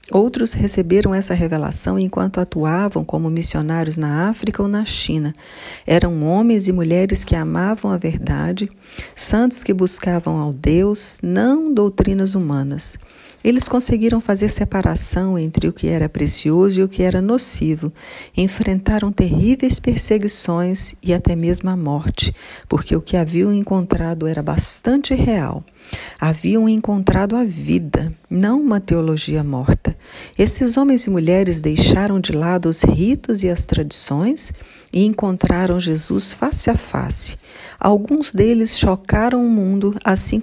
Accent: Brazilian